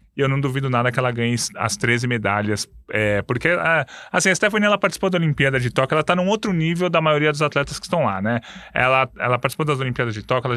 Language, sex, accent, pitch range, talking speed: Portuguese, male, Brazilian, 120-155 Hz, 250 wpm